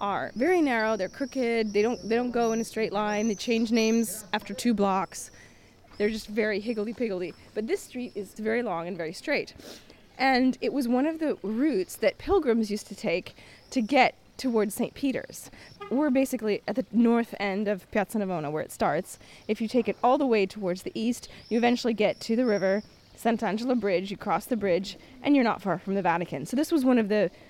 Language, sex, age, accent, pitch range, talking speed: English, female, 20-39, American, 195-250 Hz, 210 wpm